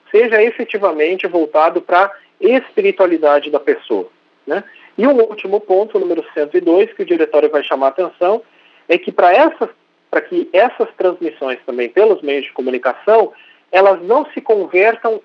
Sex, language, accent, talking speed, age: male, Portuguese, Brazilian, 150 wpm, 40-59